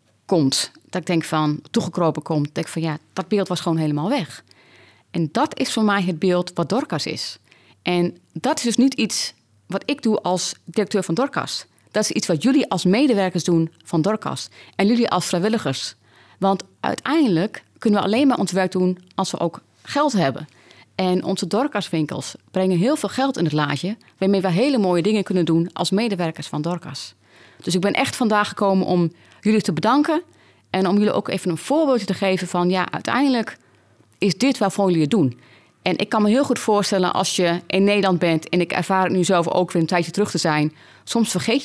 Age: 30-49